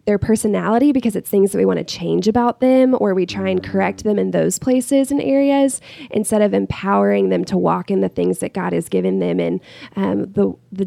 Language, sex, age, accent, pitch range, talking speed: English, female, 20-39, American, 185-220 Hz, 225 wpm